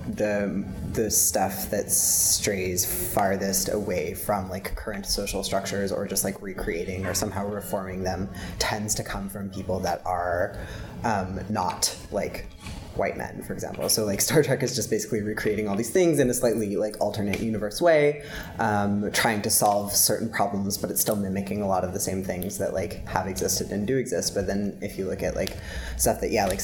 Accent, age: American, 20-39